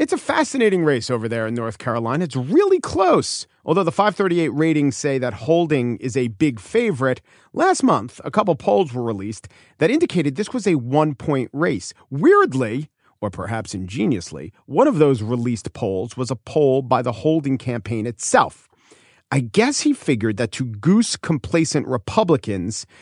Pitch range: 115-165 Hz